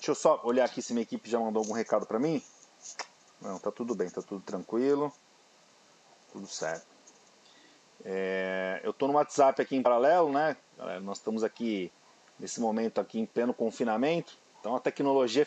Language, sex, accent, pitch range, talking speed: Portuguese, male, Brazilian, 120-160 Hz, 175 wpm